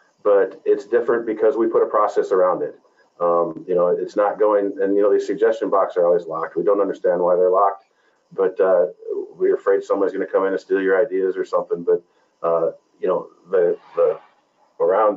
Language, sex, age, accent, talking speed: English, male, 40-59, American, 210 wpm